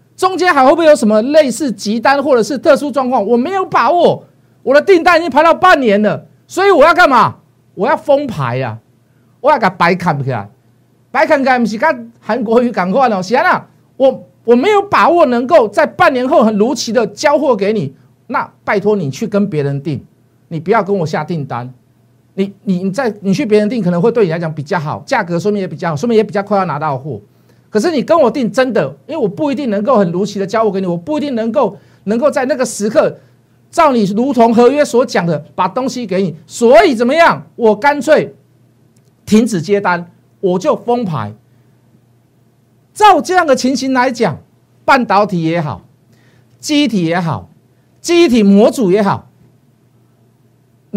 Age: 50-69